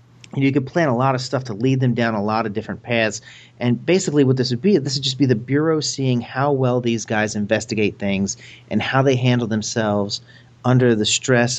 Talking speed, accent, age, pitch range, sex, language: 235 wpm, American, 40-59, 105-125 Hz, male, English